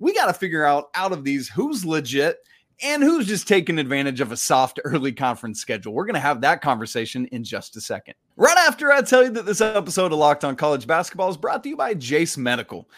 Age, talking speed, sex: 30-49, 235 wpm, male